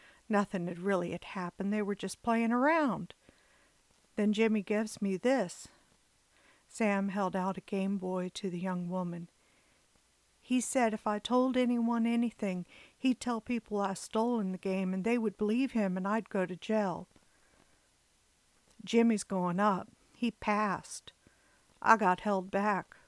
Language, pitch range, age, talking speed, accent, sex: English, 190-240 Hz, 50-69, 155 wpm, American, female